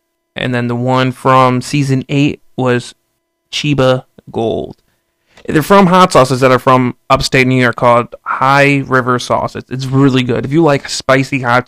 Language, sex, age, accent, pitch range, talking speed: English, male, 30-49, American, 125-165 Hz, 165 wpm